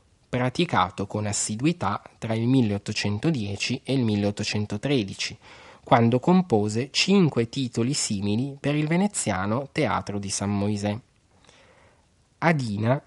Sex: male